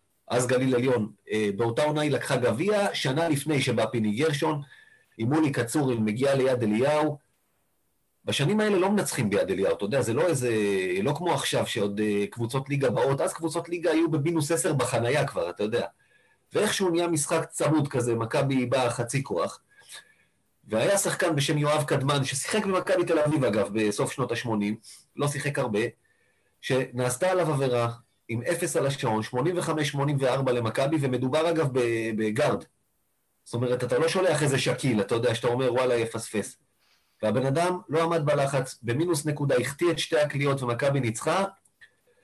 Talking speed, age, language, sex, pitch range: 155 wpm, 30-49, Hebrew, male, 125-165 Hz